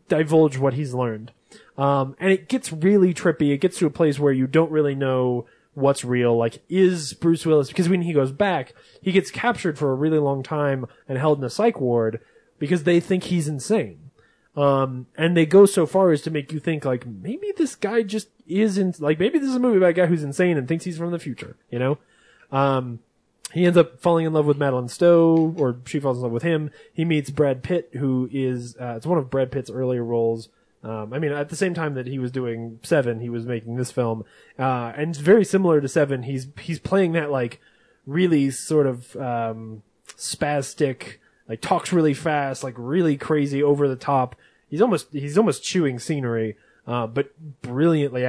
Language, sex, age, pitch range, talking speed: English, male, 20-39, 125-170 Hz, 210 wpm